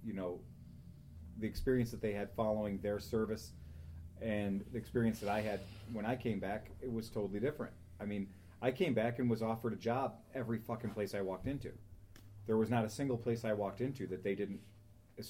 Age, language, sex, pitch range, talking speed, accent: 30-49, English, male, 105-120 Hz, 210 wpm, American